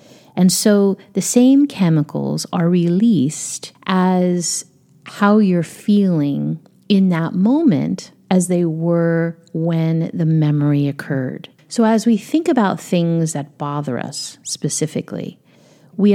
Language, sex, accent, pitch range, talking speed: English, female, American, 155-190 Hz, 120 wpm